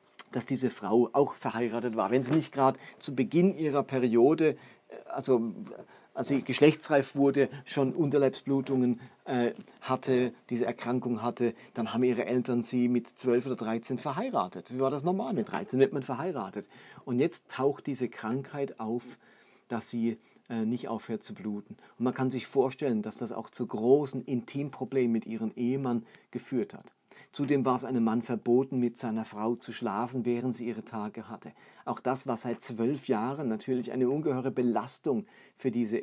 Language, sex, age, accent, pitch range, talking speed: German, male, 40-59, German, 115-135 Hz, 165 wpm